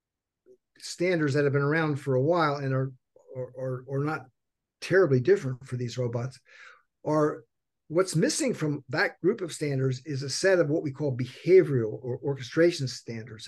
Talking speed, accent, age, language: 170 wpm, American, 50-69, English